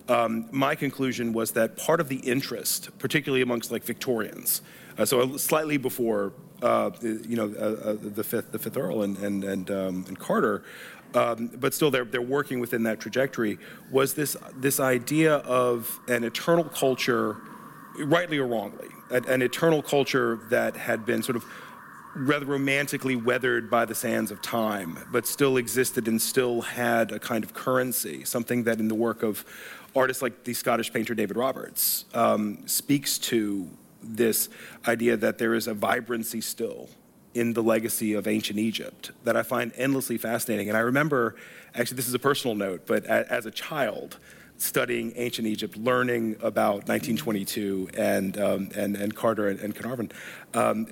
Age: 40-59